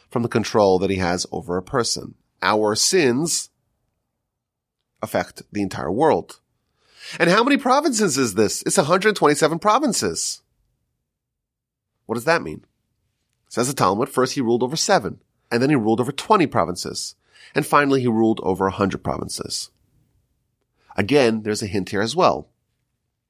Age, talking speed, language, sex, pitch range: 30-49, 145 wpm, English, male, 115-180 Hz